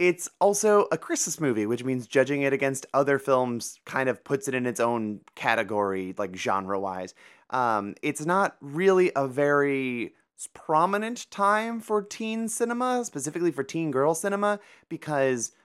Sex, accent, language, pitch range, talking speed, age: male, American, English, 115-180 Hz, 150 wpm, 30-49